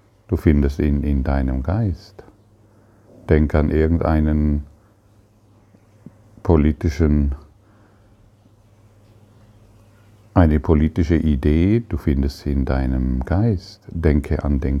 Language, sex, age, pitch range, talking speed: German, male, 50-69, 75-105 Hz, 90 wpm